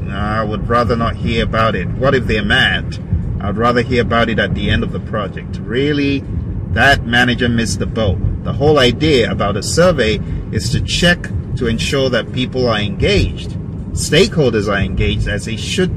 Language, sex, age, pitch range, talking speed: English, male, 30-49, 105-130 Hz, 185 wpm